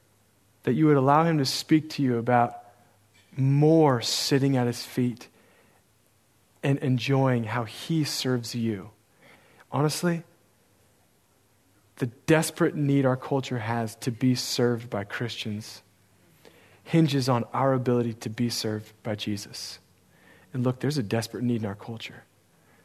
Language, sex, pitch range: English, male, 110-145 Hz